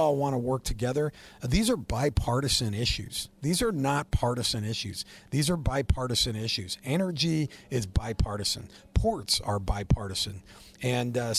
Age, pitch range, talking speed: 40-59, 110-130 Hz, 135 wpm